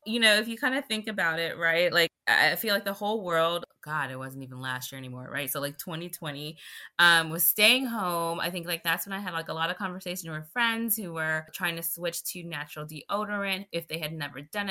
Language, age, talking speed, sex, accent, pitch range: English, 20-39, 235 wpm, female, American, 160-210 Hz